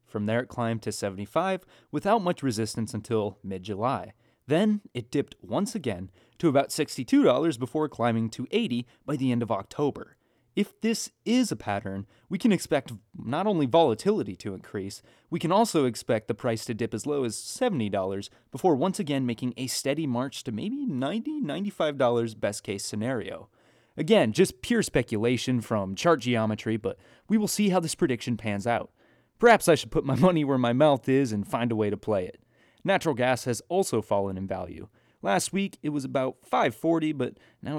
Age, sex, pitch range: 30-49, male, 110-170 Hz